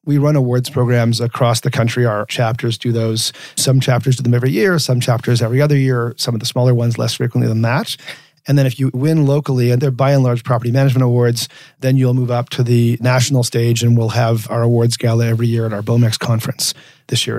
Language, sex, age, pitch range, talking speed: English, male, 30-49, 115-135 Hz, 230 wpm